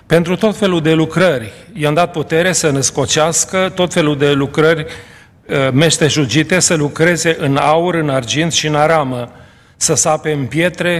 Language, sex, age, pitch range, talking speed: Romanian, male, 40-59, 140-170 Hz, 155 wpm